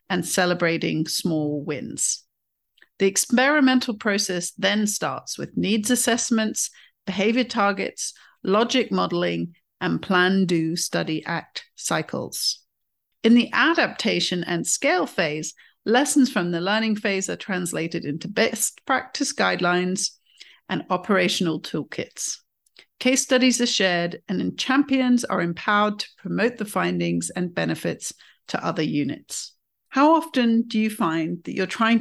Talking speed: 120 wpm